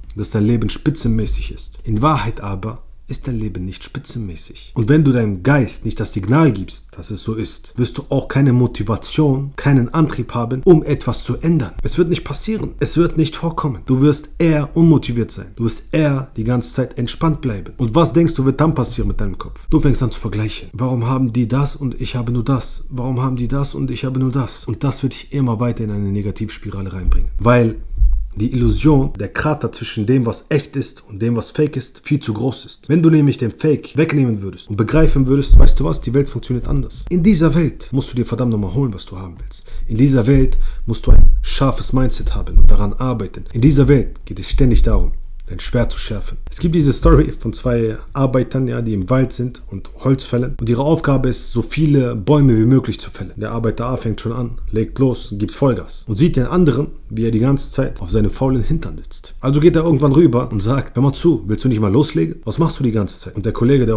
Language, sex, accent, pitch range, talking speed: German, male, German, 110-140 Hz, 235 wpm